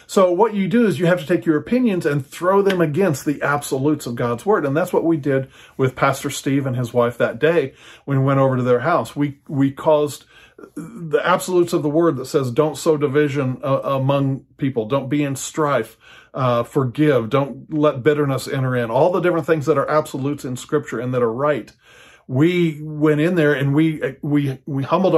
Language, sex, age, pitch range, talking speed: English, male, 40-59, 125-155 Hz, 210 wpm